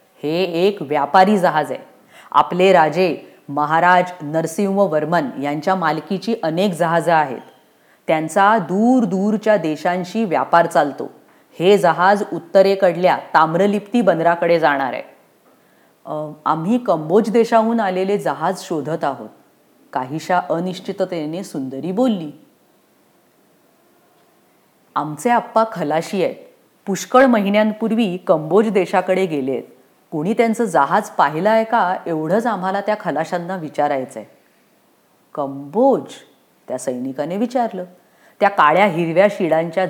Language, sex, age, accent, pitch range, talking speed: English, female, 30-49, Indian, 160-205 Hz, 100 wpm